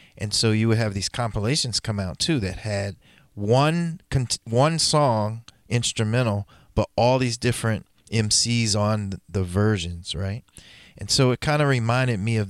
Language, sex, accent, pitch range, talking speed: English, male, American, 95-115 Hz, 160 wpm